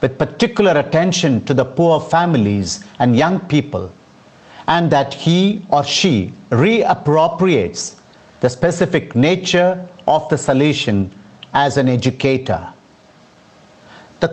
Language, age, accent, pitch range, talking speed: English, 50-69, Indian, 130-170 Hz, 110 wpm